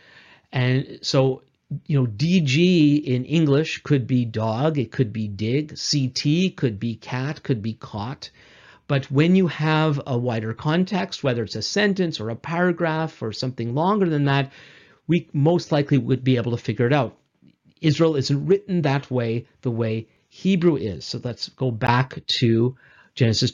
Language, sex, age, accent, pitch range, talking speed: English, male, 50-69, American, 125-155 Hz, 165 wpm